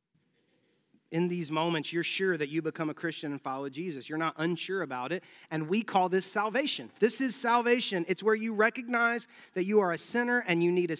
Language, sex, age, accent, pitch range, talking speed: English, male, 30-49, American, 170-235 Hz, 215 wpm